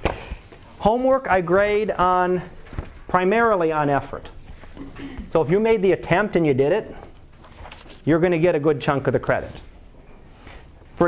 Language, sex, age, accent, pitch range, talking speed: English, male, 30-49, American, 140-185 Hz, 150 wpm